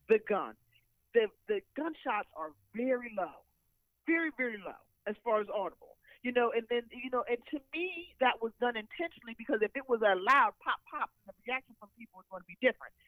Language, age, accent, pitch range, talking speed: English, 40-59, American, 195-255 Hz, 205 wpm